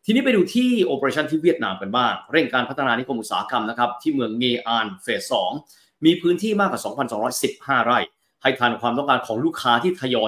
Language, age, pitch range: Thai, 30-49, 120-185 Hz